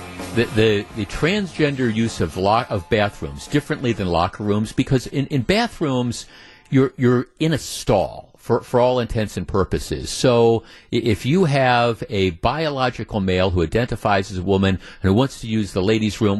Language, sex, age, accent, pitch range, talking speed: English, male, 50-69, American, 105-140 Hz, 175 wpm